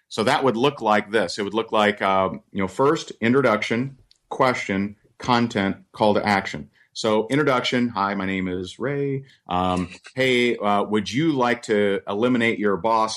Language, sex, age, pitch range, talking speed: English, male, 40-59, 100-120 Hz, 170 wpm